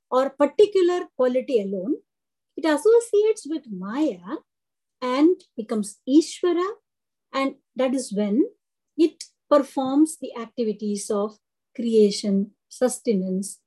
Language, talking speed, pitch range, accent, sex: Tamil, 95 wpm, 225-335 Hz, native, female